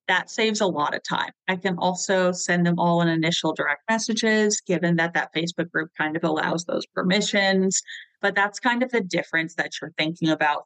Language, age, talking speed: English, 30-49, 205 wpm